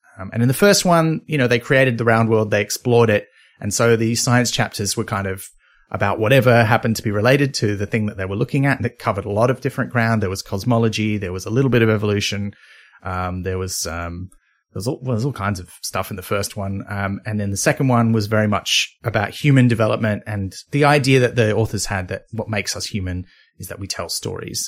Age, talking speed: 30-49, 250 wpm